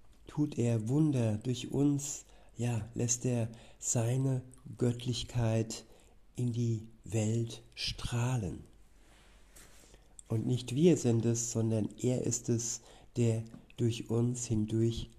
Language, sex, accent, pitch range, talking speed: German, male, German, 110-125 Hz, 105 wpm